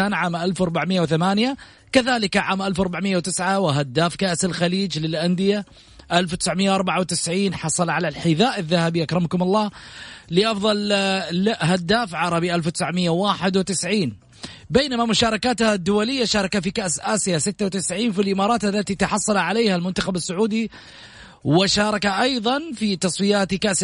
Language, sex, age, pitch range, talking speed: English, male, 30-49, 180-215 Hz, 100 wpm